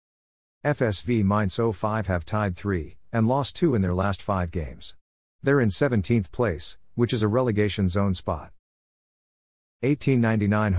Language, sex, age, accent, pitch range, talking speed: English, male, 50-69, American, 90-115 Hz, 140 wpm